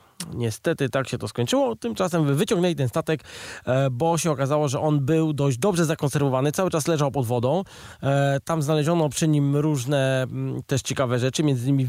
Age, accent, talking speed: 20-39, native, 165 wpm